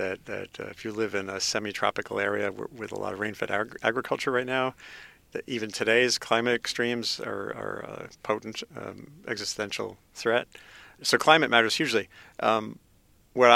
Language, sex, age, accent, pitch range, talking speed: English, male, 50-69, American, 105-120 Hz, 160 wpm